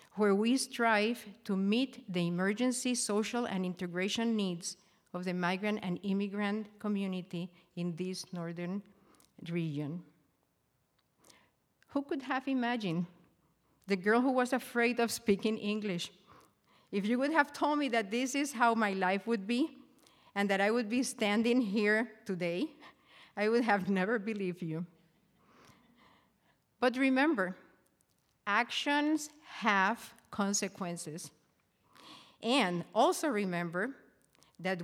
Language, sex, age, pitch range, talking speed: English, female, 50-69, 185-240 Hz, 120 wpm